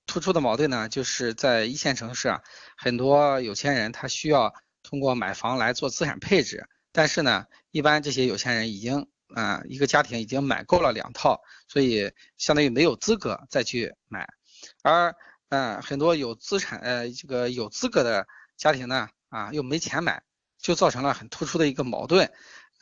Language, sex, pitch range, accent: Chinese, male, 125-155 Hz, native